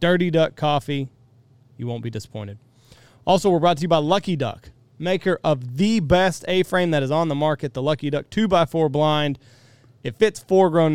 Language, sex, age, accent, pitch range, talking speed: English, male, 30-49, American, 125-160 Hz, 180 wpm